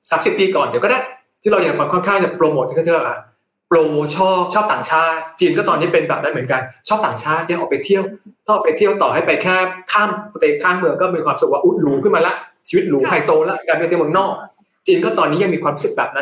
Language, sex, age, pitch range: Thai, male, 20-39, 165-225 Hz